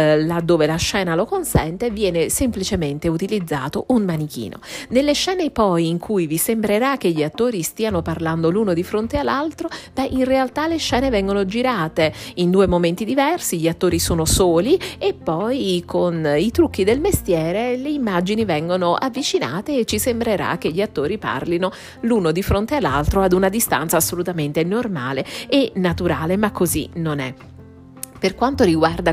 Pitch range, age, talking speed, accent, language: 155-235 Hz, 40-59, 160 wpm, native, Italian